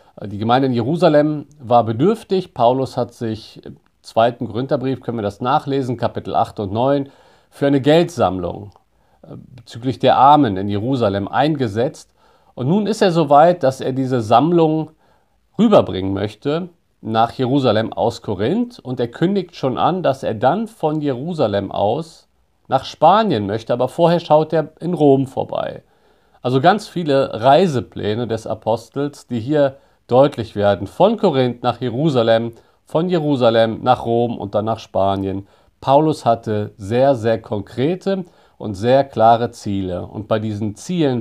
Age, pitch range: 50-69, 110-155 Hz